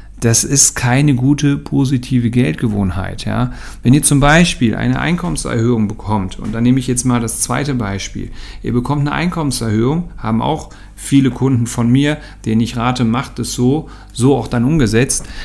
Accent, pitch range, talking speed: German, 115-140 Hz, 165 wpm